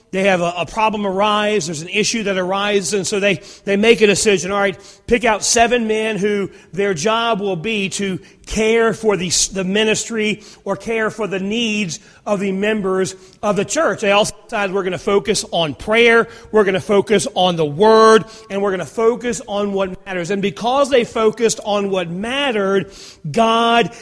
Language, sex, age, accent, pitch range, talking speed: English, male, 40-59, American, 195-230 Hz, 195 wpm